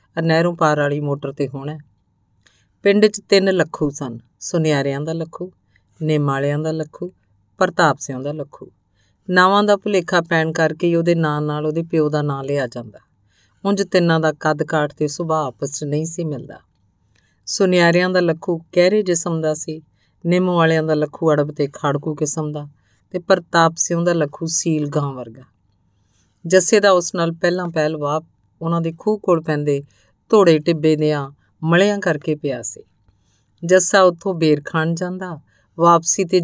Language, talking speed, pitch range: Punjabi, 160 wpm, 140-170 Hz